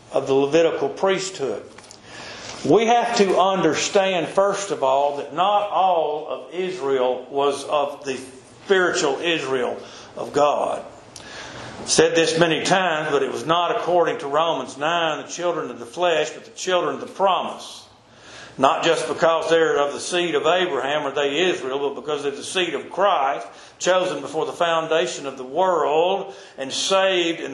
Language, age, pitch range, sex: English, 50-69, 150-190 Hz, male